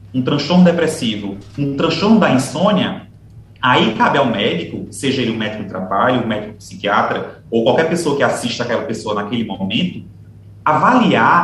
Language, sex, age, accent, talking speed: Portuguese, male, 30-49, Brazilian, 170 wpm